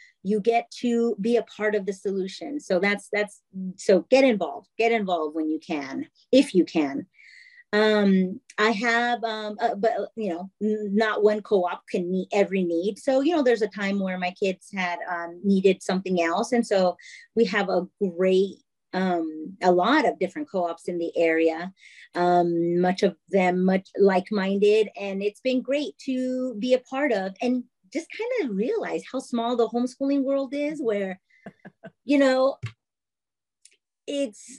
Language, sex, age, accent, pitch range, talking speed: English, female, 30-49, American, 180-235 Hz, 170 wpm